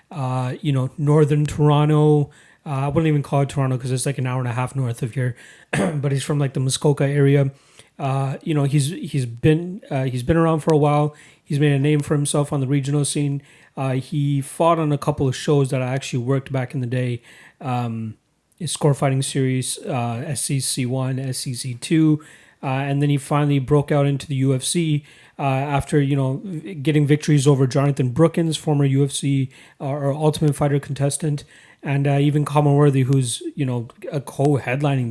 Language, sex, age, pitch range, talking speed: English, male, 30-49, 130-150 Hz, 190 wpm